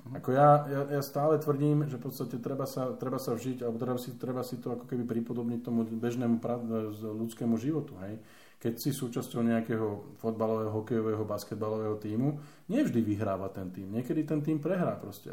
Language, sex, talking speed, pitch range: Slovak, male, 185 wpm, 110-130 Hz